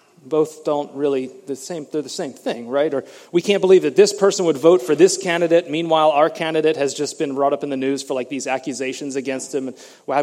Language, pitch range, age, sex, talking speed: English, 135-175 Hz, 30-49, male, 235 wpm